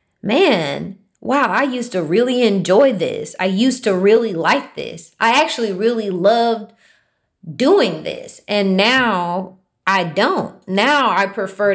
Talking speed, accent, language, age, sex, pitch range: 140 wpm, American, English, 20-39, female, 175-235 Hz